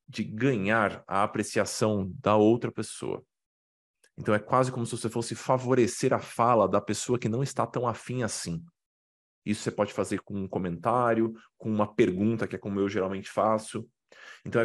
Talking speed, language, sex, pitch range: 170 wpm, Portuguese, male, 95-120 Hz